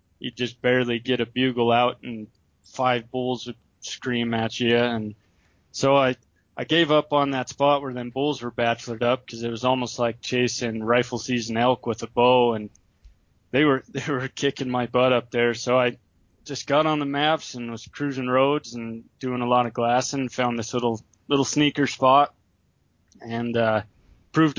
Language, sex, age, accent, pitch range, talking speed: English, male, 20-39, American, 115-135 Hz, 190 wpm